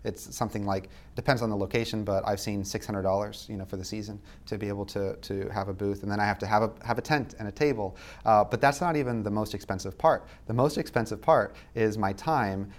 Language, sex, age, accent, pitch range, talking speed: English, male, 30-49, American, 95-110 Hz, 250 wpm